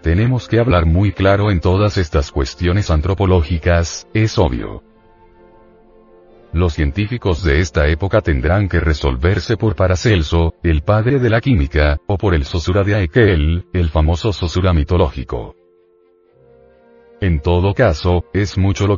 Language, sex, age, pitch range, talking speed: Spanish, male, 40-59, 85-105 Hz, 135 wpm